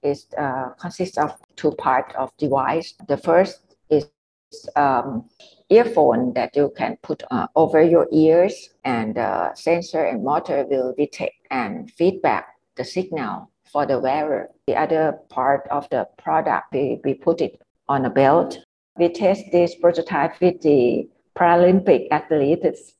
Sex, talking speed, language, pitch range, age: female, 150 wpm, English, 150-185 Hz, 60-79